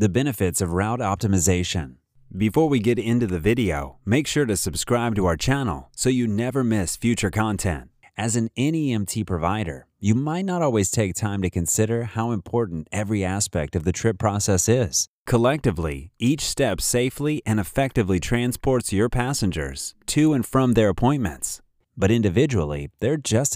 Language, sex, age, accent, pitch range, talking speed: English, male, 30-49, American, 90-120 Hz, 160 wpm